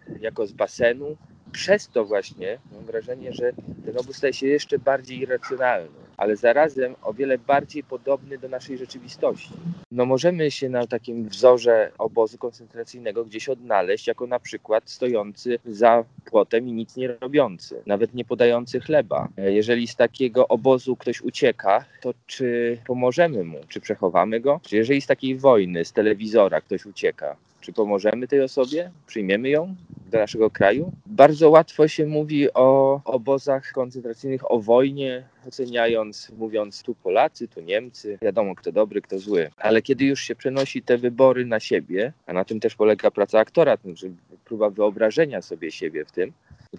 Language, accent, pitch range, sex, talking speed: Polish, native, 110-150 Hz, male, 160 wpm